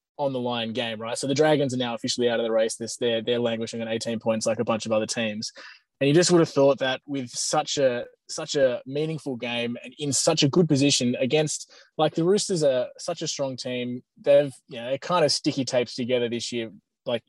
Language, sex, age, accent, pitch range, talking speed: English, male, 20-39, Australian, 120-145 Hz, 240 wpm